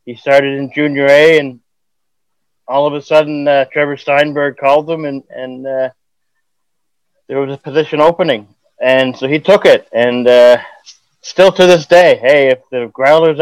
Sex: male